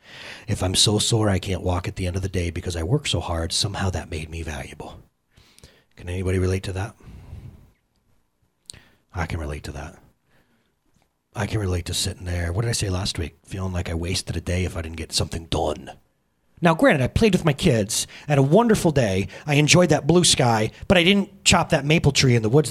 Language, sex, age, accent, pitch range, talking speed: English, male, 30-49, American, 90-140 Hz, 220 wpm